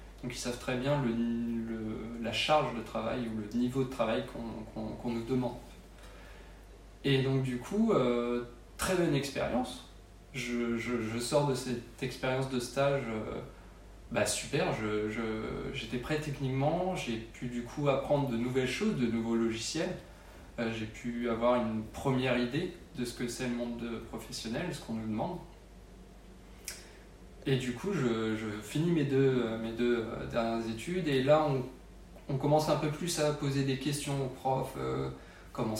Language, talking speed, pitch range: French, 165 wpm, 115-135 Hz